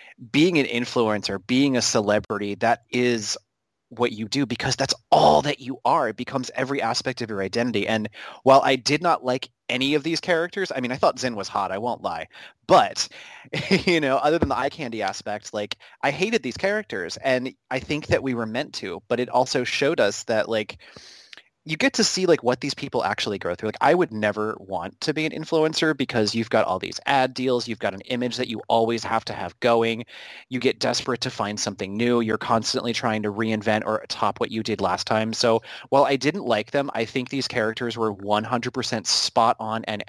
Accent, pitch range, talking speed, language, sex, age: American, 110-135 Hz, 215 wpm, English, male, 30-49